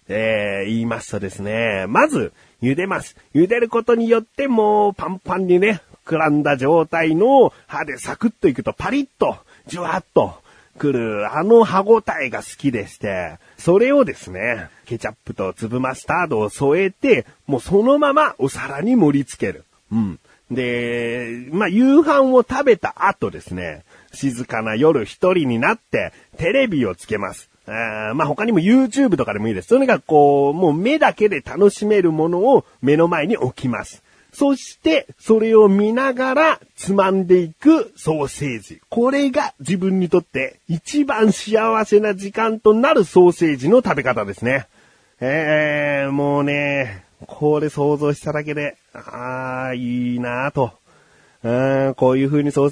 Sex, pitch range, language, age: male, 130-215 Hz, Japanese, 40-59